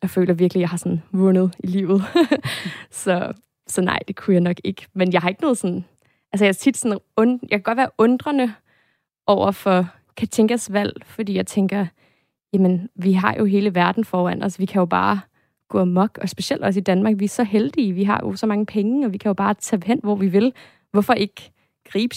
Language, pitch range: Danish, 180-205 Hz